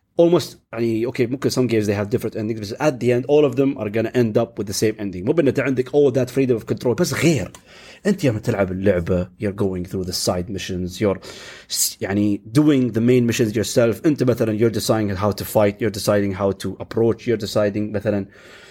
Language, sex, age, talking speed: Arabic, male, 30-49, 185 wpm